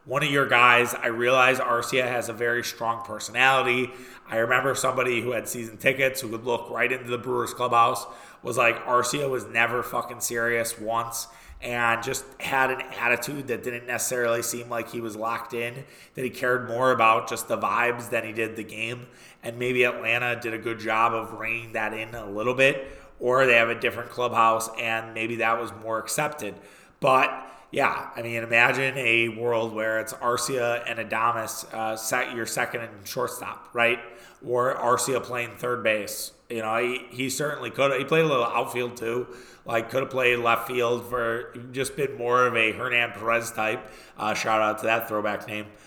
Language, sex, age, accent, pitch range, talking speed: English, male, 20-39, American, 115-125 Hz, 195 wpm